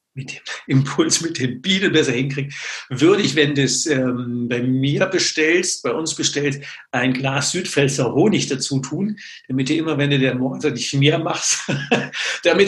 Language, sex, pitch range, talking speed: German, male, 130-155 Hz, 175 wpm